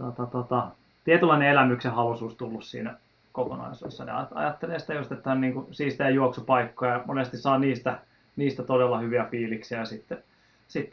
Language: Finnish